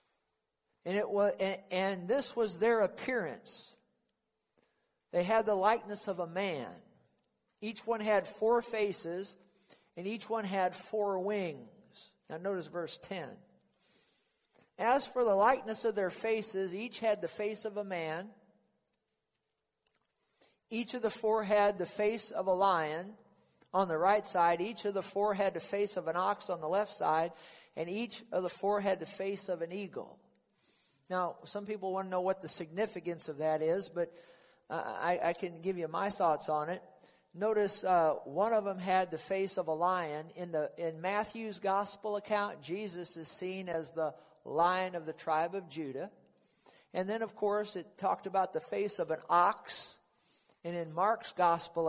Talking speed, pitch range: 175 wpm, 170-210 Hz